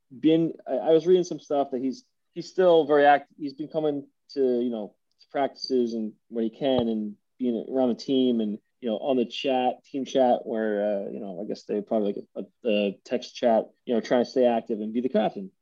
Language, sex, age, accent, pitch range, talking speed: English, male, 20-39, American, 110-140 Hz, 230 wpm